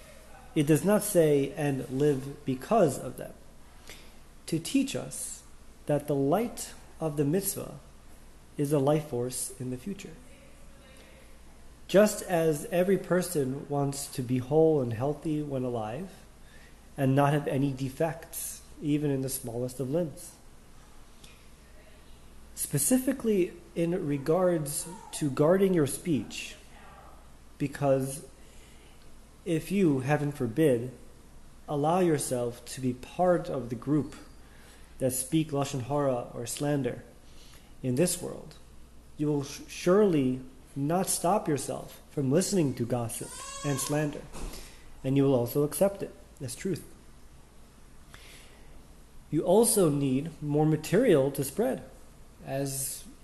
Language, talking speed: English, 120 wpm